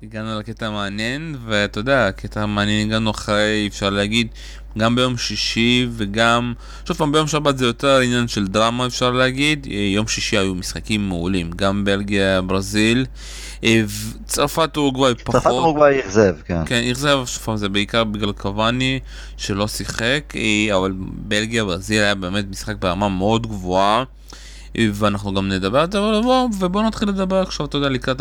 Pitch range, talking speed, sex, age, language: 105-125 Hz, 155 wpm, male, 20-39, Hebrew